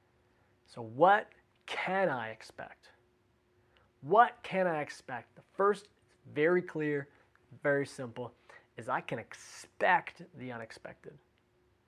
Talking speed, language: 105 wpm, English